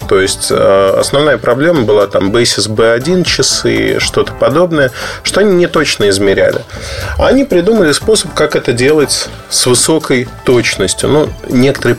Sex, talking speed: male, 140 wpm